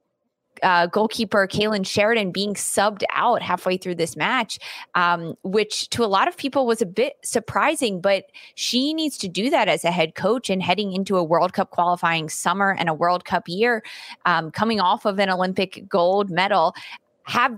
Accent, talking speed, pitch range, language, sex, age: American, 185 wpm, 175-205 Hz, English, female, 20-39